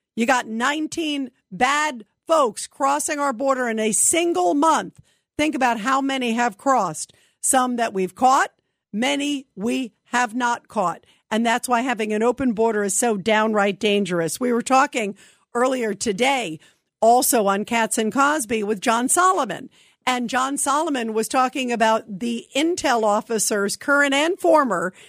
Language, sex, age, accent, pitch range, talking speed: English, female, 50-69, American, 215-275 Hz, 150 wpm